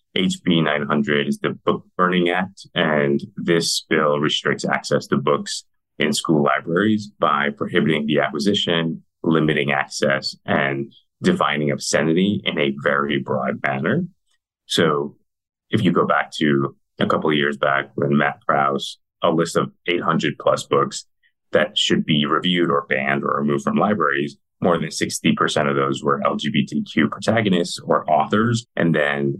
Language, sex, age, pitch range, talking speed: English, male, 30-49, 70-80 Hz, 150 wpm